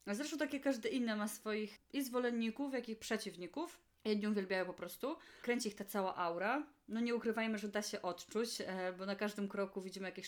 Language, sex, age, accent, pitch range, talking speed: Polish, female, 30-49, native, 205-260 Hz, 195 wpm